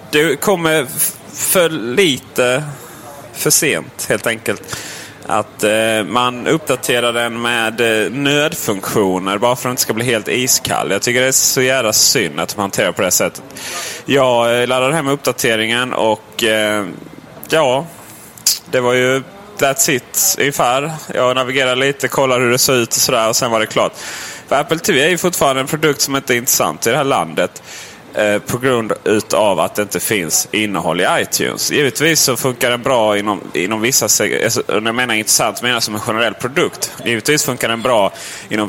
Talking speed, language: 175 wpm, Swedish